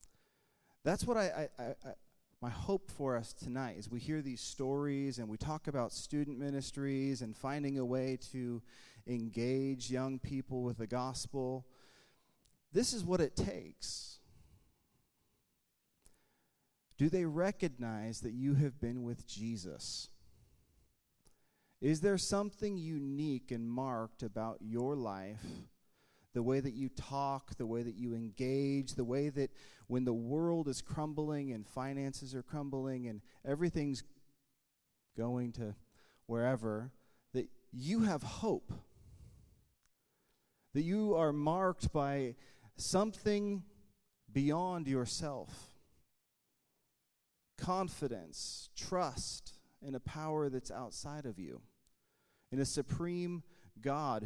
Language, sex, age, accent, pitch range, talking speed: English, male, 30-49, American, 120-145 Hz, 120 wpm